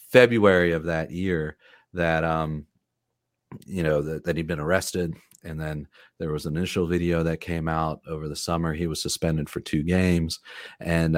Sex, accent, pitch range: male, American, 80-90 Hz